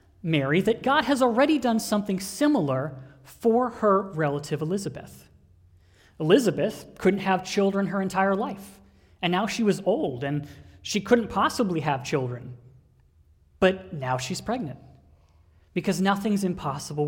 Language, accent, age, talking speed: English, American, 30-49, 130 wpm